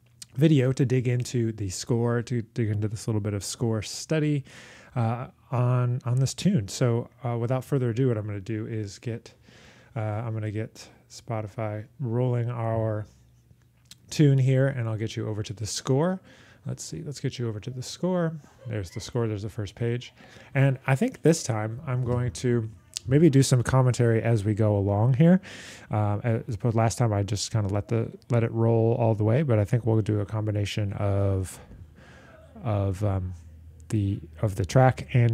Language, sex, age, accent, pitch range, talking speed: English, male, 30-49, American, 105-125 Hz, 195 wpm